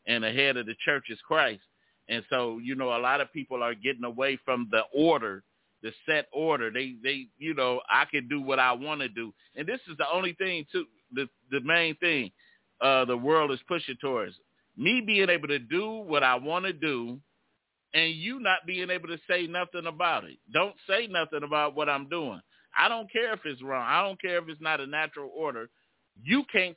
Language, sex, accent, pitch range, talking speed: English, male, American, 130-165 Hz, 220 wpm